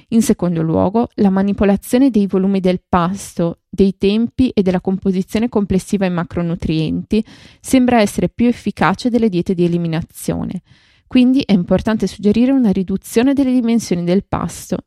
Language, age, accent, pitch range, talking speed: Italian, 20-39, native, 180-220 Hz, 140 wpm